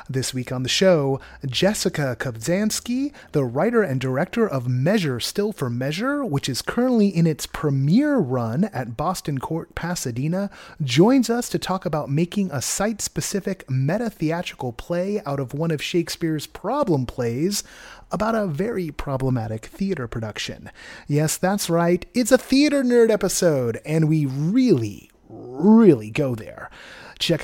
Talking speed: 140 wpm